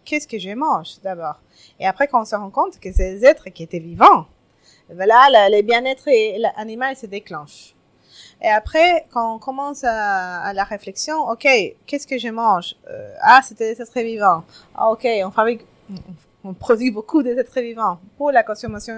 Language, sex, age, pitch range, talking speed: French, female, 20-39, 195-270 Hz, 185 wpm